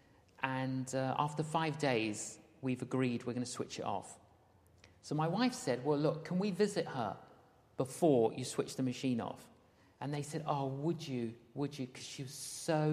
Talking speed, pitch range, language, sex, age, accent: 190 wpm, 125-170 Hz, English, male, 50-69, British